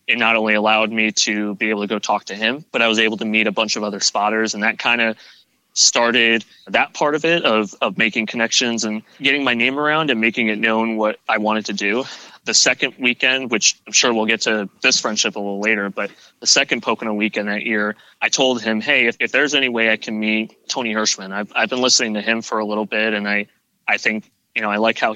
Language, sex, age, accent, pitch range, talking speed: English, male, 20-39, American, 105-115 Hz, 250 wpm